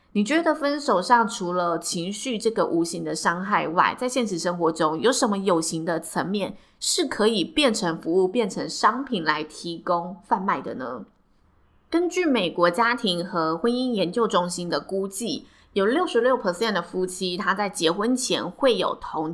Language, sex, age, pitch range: Chinese, female, 20-39, 175-255 Hz